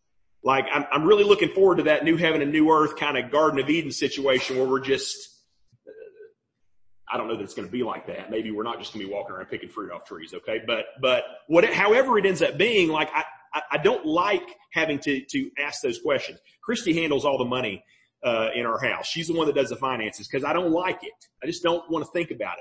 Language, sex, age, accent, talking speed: English, male, 30-49, American, 250 wpm